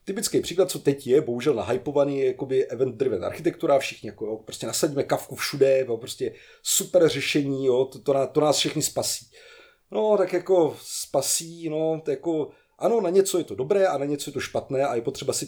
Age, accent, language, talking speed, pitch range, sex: 30-49, native, Czech, 210 wpm, 125-165 Hz, male